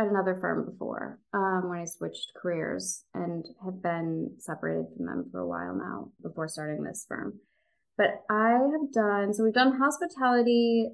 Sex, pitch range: female, 170-215 Hz